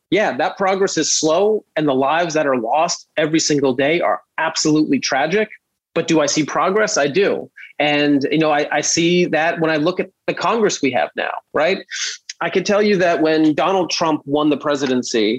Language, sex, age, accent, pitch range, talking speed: English, male, 30-49, American, 145-175 Hz, 205 wpm